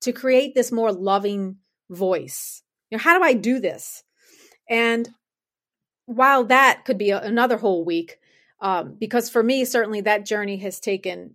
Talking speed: 160 wpm